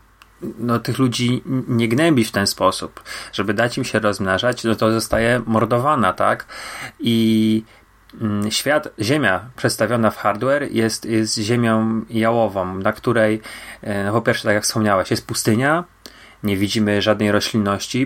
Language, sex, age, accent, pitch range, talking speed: Polish, male, 30-49, native, 105-120 Hz, 140 wpm